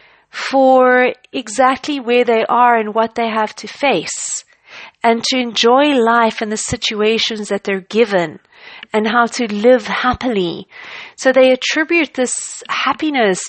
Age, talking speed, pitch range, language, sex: 40-59, 140 wpm, 210-255 Hz, English, female